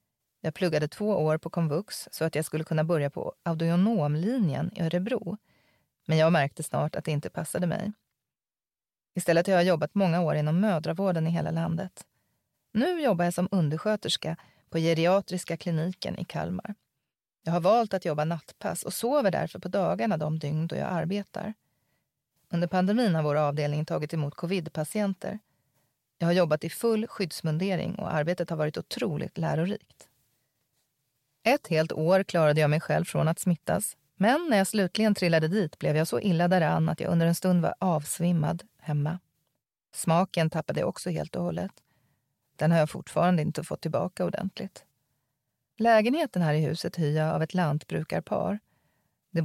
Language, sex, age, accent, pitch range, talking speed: English, female, 30-49, Swedish, 155-190 Hz, 165 wpm